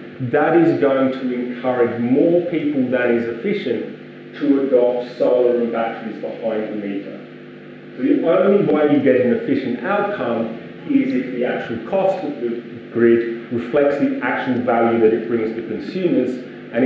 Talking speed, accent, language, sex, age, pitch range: 160 wpm, British, English, male, 30-49, 115-170 Hz